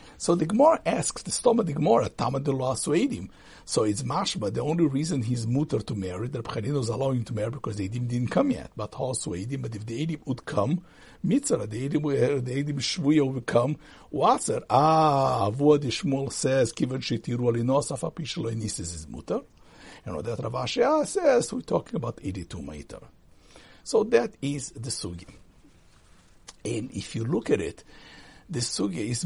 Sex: male